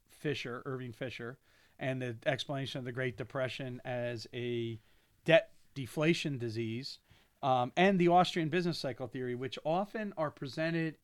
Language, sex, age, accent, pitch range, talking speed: English, male, 40-59, American, 120-145 Hz, 140 wpm